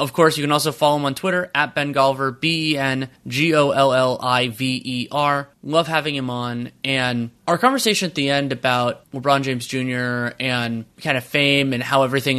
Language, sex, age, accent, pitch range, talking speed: English, male, 20-39, American, 120-140 Hz, 165 wpm